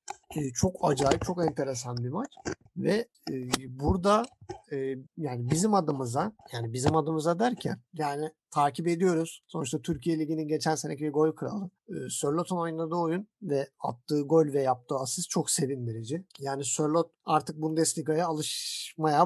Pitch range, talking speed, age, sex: 145-205 Hz, 130 wpm, 50-69, male